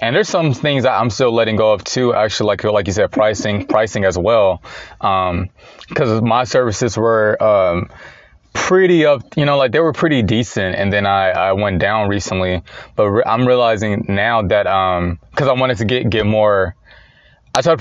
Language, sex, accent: English, male, American